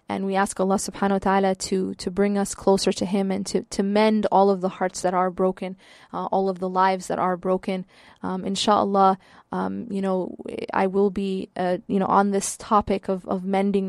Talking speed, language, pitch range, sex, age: 215 wpm, English, 190-200 Hz, female, 20-39